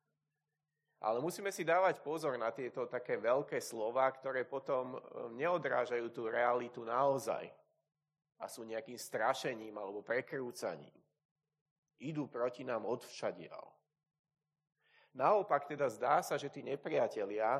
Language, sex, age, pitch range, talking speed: Slovak, male, 30-49, 130-155 Hz, 115 wpm